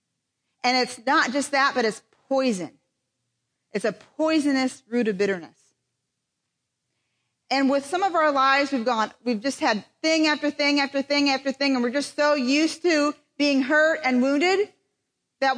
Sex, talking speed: female, 165 wpm